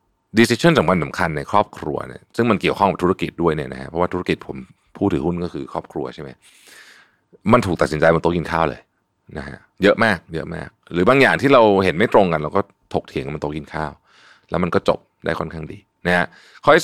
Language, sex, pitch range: Thai, male, 80-100 Hz